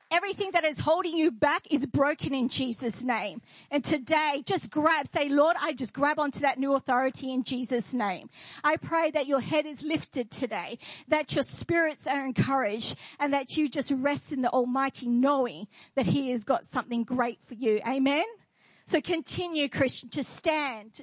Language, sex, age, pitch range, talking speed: English, female, 40-59, 245-305 Hz, 180 wpm